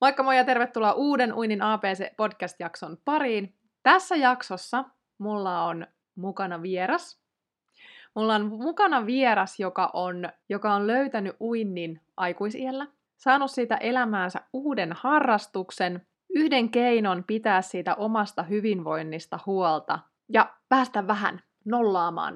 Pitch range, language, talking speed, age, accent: 180-245 Hz, Finnish, 105 wpm, 20-39, native